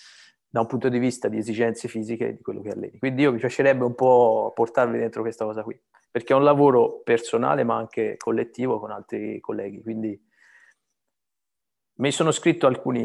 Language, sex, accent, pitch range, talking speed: Italian, male, native, 110-130 Hz, 180 wpm